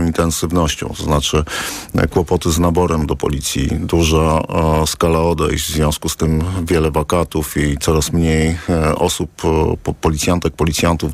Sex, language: male, Polish